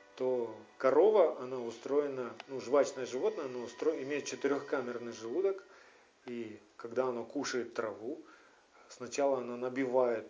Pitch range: 125-180 Hz